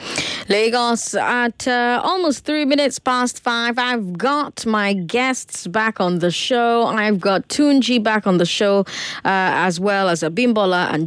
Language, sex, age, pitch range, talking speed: English, female, 20-39, 170-240 Hz, 155 wpm